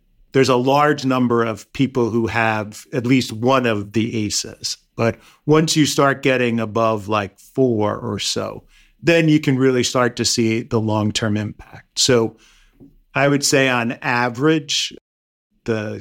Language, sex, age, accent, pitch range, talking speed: English, male, 50-69, American, 110-135 Hz, 155 wpm